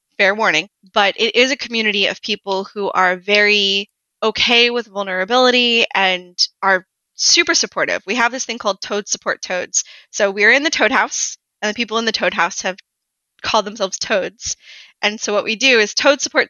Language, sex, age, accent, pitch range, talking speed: English, female, 20-39, American, 190-220 Hz, 190 wpm